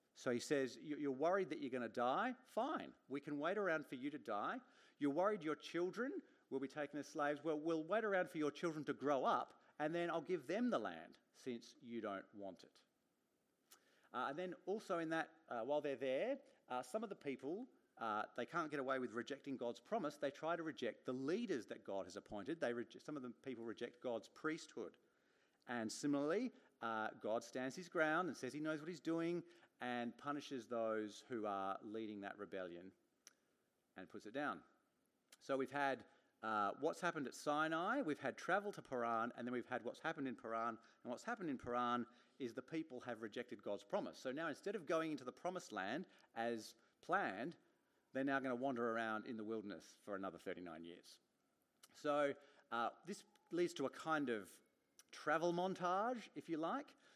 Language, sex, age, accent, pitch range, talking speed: English, male, 40-59, Australian, 120-165 Hz, 200 wpm